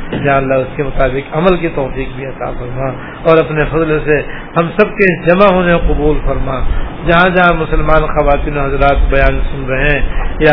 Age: 50-69